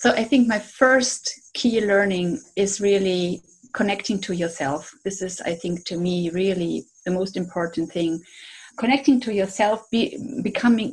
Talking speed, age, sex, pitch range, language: 155 wpm, 30-49, female, 180-225 Hz, English